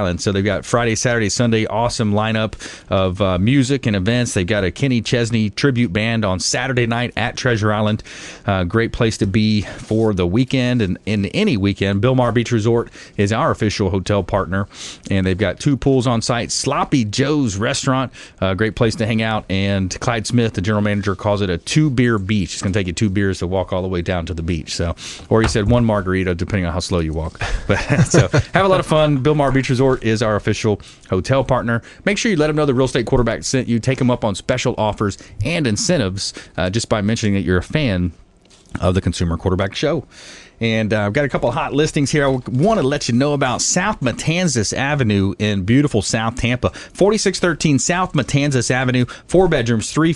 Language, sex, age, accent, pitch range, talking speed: English, male, 40-59, American, 100-130 Hz, 220 wpm